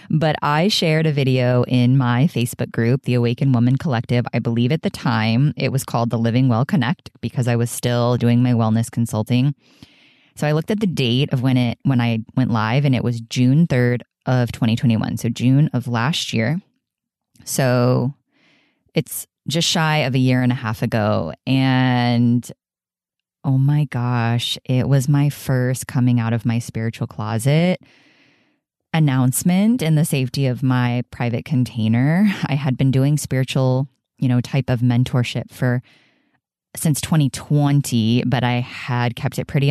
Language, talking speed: English, 165 wpm